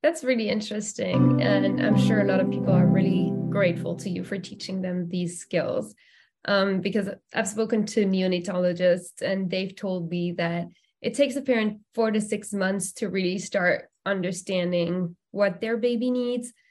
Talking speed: 170 wpm